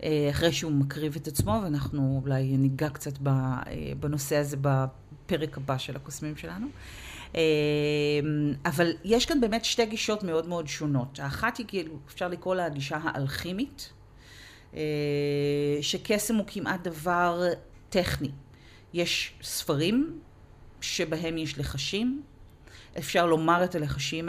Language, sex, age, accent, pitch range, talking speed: Hebrew, female, 40-59, native, 145-195 Hz, 115 wpm